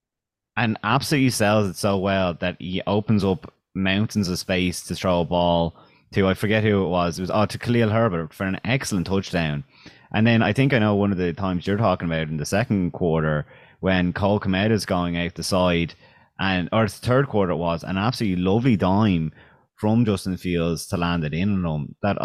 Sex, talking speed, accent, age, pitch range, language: male, 215 wpm, Irish, 30-49, 85-105 Hz, English